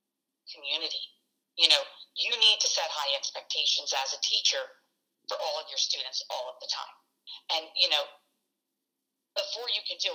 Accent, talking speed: American, 165 wpm